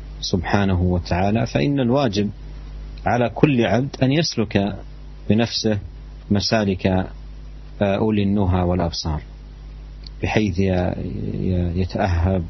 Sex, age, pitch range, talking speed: male, 40-59, 95-115 Hz, 70 wpm